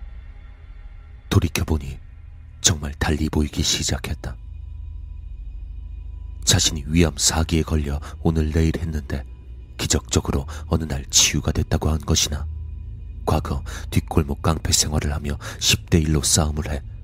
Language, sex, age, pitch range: Korean, male, 30-49, 75-85 Hz